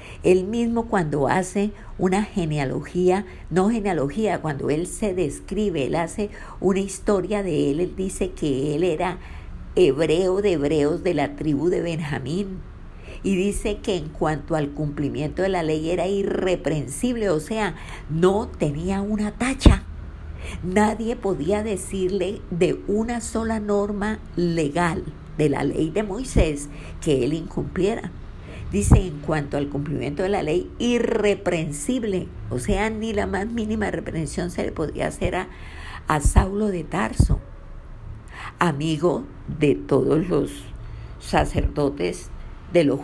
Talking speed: 135 wpm